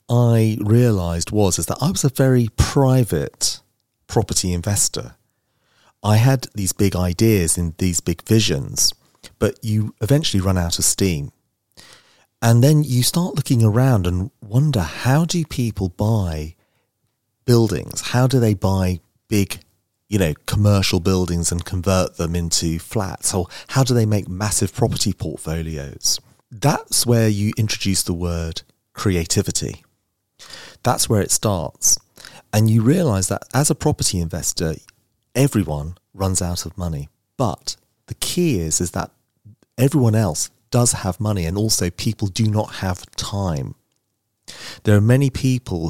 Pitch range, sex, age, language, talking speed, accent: 90-120 Hz, male, 30-49, English, 145 wpm, British